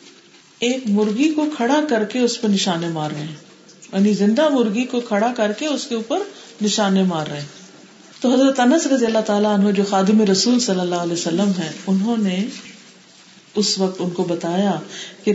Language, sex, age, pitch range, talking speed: Urdu, female, 50-69, 175-220 Hz, 190 wpm